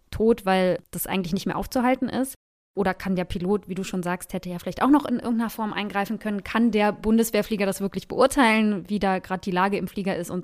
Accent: German